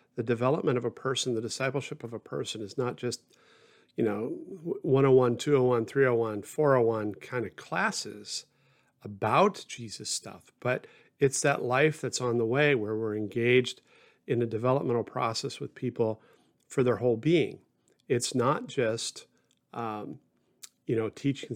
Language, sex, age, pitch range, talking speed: English, male, 50-69, 115-135 Hz, 150 wpm